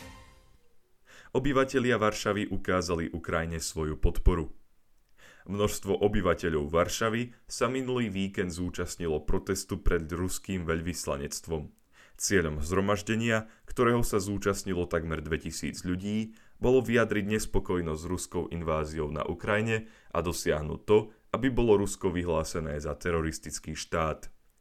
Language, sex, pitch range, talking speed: Slovak, male, 85-105 Hz, 105 wpm